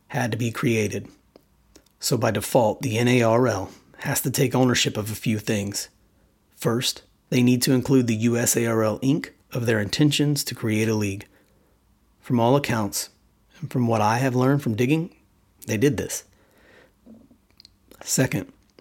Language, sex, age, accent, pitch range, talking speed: English, male, 30-49, American, 110-130 Hz, 150 wpm